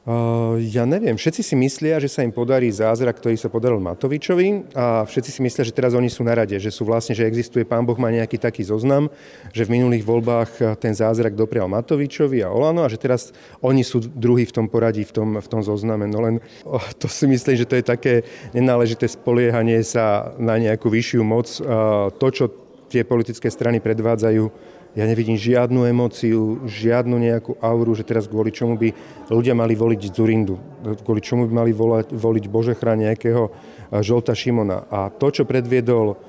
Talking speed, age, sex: 180 wpm, 40-59, male